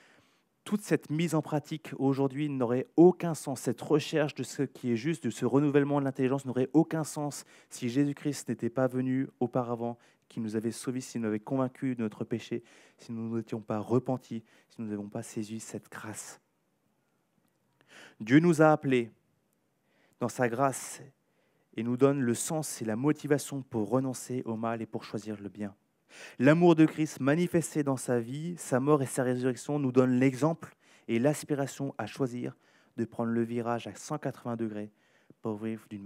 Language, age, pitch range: French, 30-49, 110-140 Hz